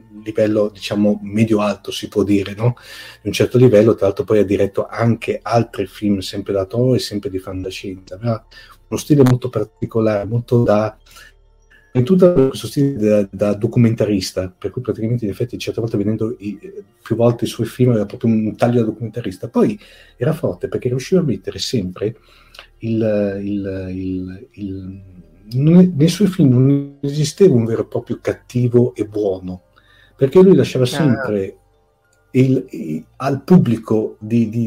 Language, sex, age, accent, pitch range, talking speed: Italian, male, 40-59, native, 105-125 Hz, 170 wpm